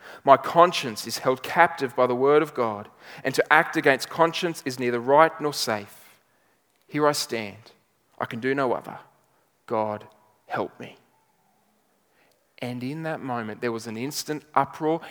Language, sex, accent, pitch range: English, male, Australian, 115-145 Hz